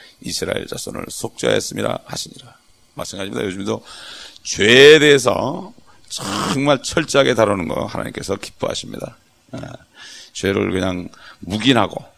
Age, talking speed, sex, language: 40-59, 90 wpm, male, English